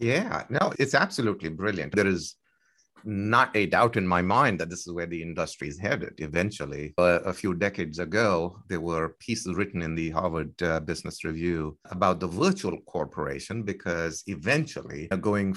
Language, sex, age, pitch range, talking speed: English, male, 50-69, 85-110 Hz, 170 wpm